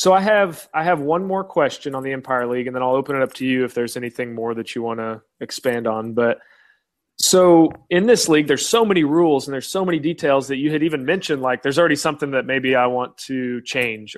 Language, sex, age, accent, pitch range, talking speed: English, male, 30-49, American, 130-160 Hz, 250 wpm